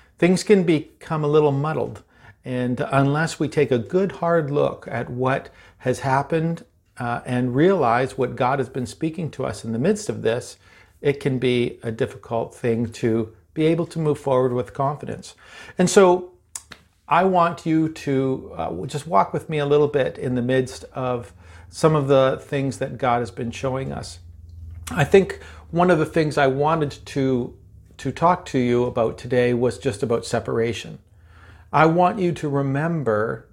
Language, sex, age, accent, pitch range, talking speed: English, male, 50-69, American, 120-150 Hz, 175 wpm